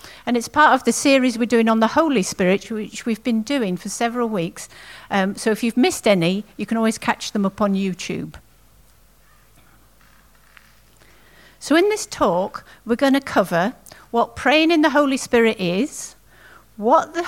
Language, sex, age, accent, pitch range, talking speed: English, female, 50-69, British, 195-255 Hz, 175 wpm